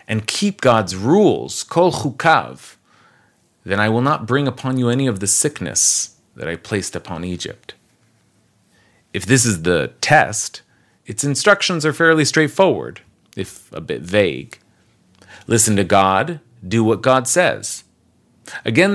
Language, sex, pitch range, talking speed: English, male, 100-135 Hz, 140 wpm